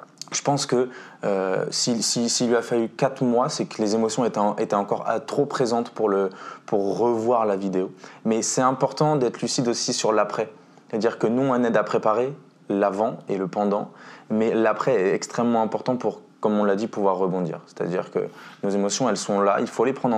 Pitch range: 105-125 Hz